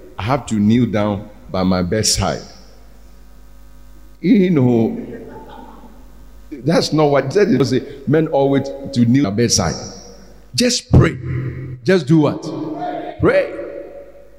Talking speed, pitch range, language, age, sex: 115 wpm, 95-140 Hz, English, 50-69, male